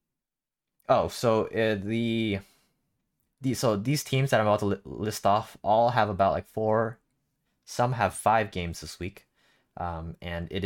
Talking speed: 165 wpm